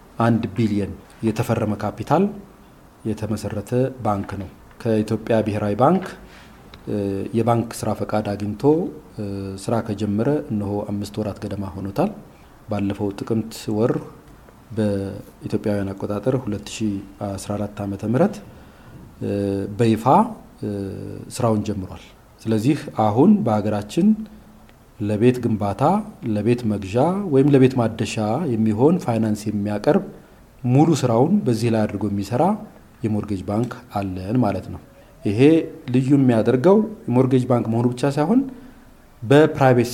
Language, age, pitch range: Amharic, 40-59, 105-130 Hz